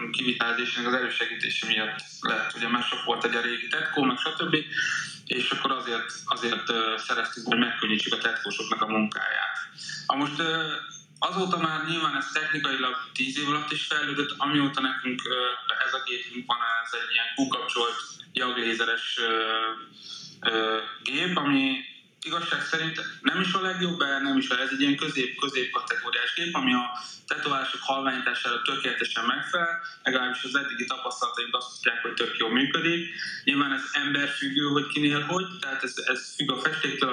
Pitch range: 120-155 Hz